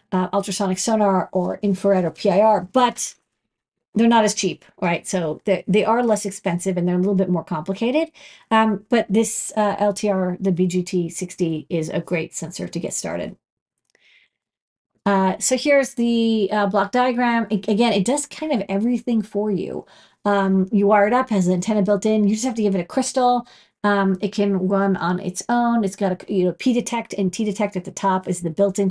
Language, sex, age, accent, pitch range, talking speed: English, female, 40-59, American, 190-230 Hz, 200 wpm